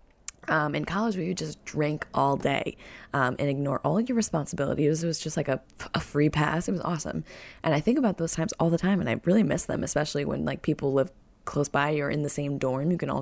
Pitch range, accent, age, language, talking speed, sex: 145-185 Hz, American, 20-39, English, 265 wpm, female